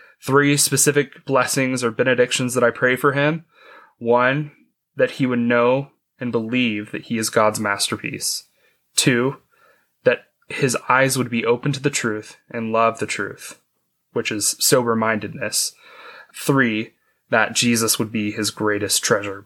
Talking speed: 145 wpm